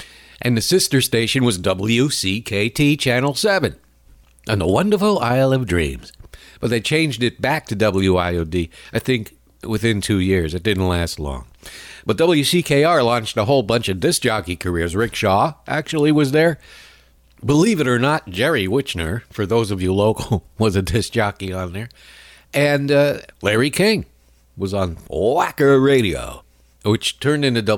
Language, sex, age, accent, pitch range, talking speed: English, male, 60-79, American, 95-145 Hz, 160 wpm